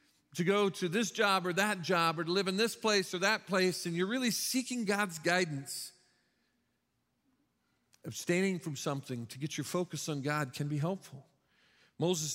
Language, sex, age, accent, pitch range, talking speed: English, male, 50-69, American, 140-180 Hz, 175 wpm